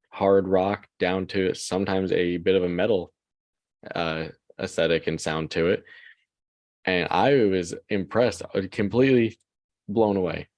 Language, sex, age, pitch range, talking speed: English, male, 20-39, 90-100 Hz, 130 wpm